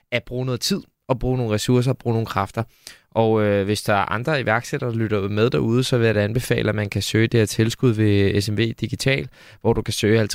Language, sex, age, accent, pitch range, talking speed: Danish, male, 20-39, native, 105-120 Hz, 245 wpm